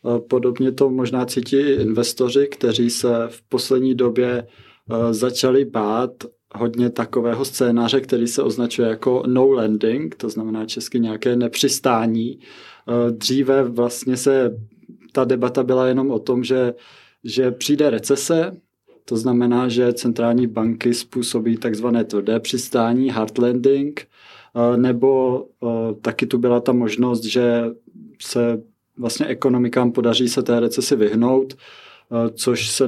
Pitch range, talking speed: 115-130 Hz, 120 wpm